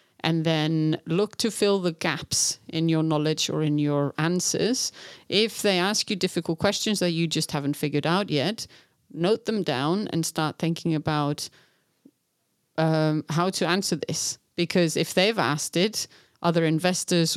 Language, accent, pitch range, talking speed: English, British, 150-180 Hz, 160 wpm